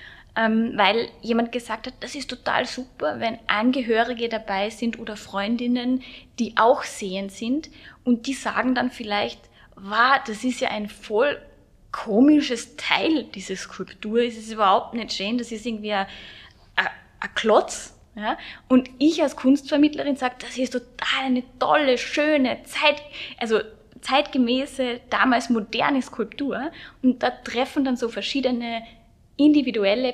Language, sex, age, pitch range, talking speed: German, female, 10-29, 215-260 Hz, 135 wpm